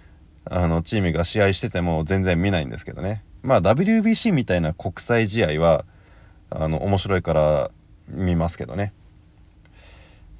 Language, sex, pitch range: Japanese, male, 85-130 Hz